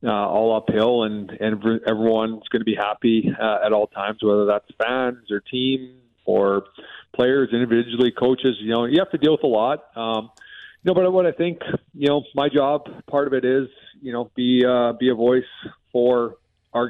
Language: English